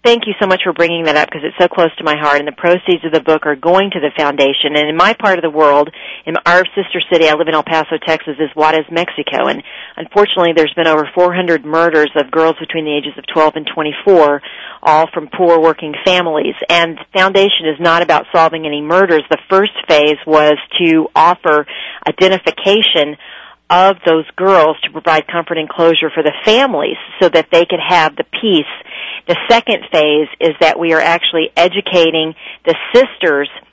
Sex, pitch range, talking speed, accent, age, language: female, 155-185 Hz, 200 wpm, American, 40-59, English